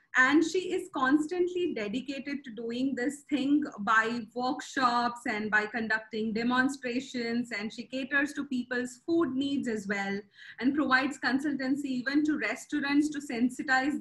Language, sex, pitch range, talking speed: English, female, 235-300 Hz, 135 wpm